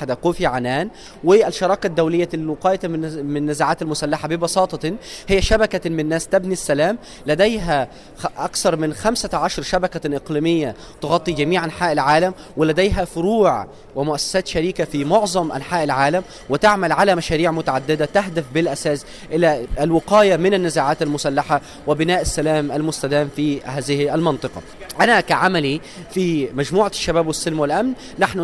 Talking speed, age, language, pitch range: 120 wpm, 30-49, Arabic, 150-185 Hz